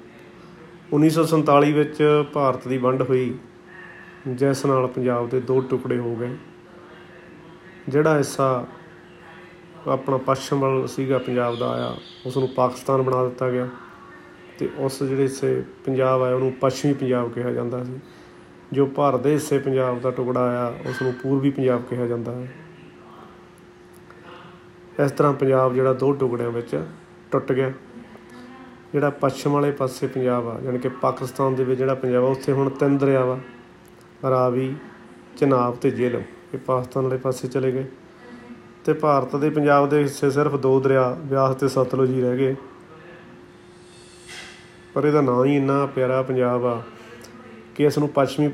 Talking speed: 135 wpm